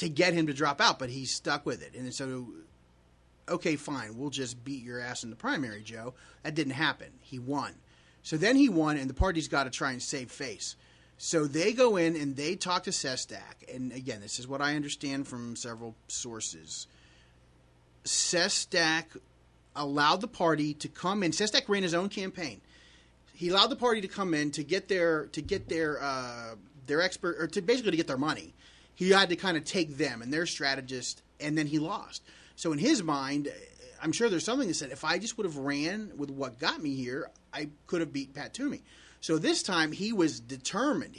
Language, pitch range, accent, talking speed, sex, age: English, 130-180 Hz, American, 205 wpm, male, 30-49